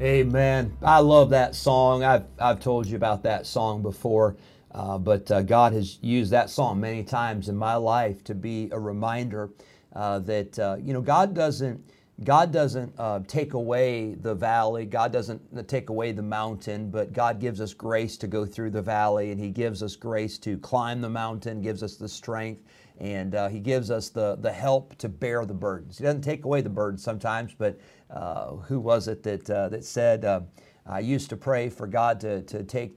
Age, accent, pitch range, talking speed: 40-59, American, 105-130 Hz, 200 wpm